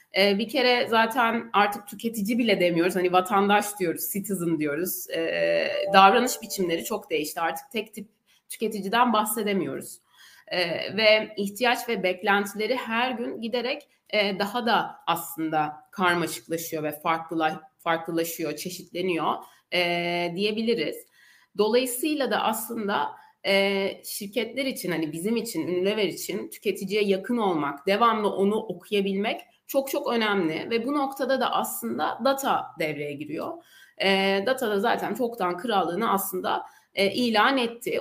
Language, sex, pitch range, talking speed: Turkish, female, 180-240 Hz, 115 wpm